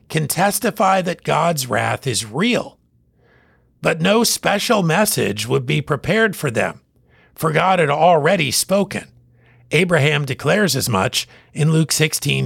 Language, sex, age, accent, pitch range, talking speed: English, male, 50-69, American, 145-200 Hz, 135 wpm